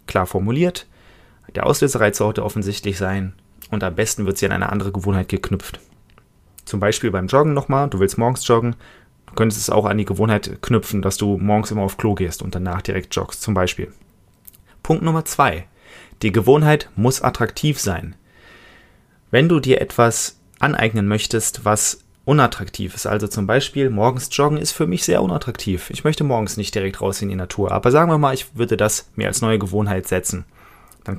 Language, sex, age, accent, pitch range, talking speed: German, male, 30-49, German, 95-125 Hz, 185 wpm